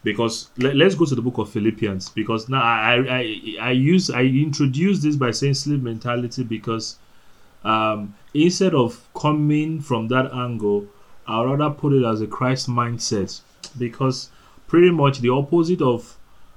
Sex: male